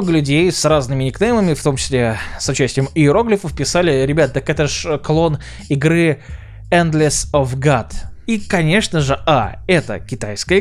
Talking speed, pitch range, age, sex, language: 145 wpm, 120-165 Hz, 20-39, male, Russian